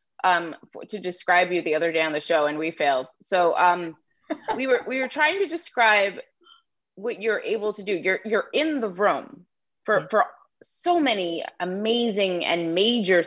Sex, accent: female, American